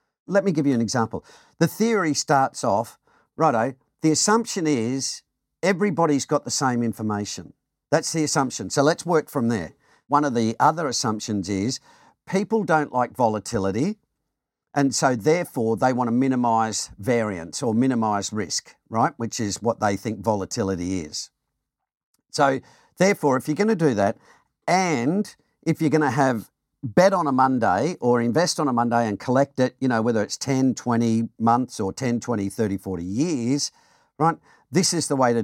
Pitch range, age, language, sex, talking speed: 115-150 Hz, 50-69, English, male, 170 wpm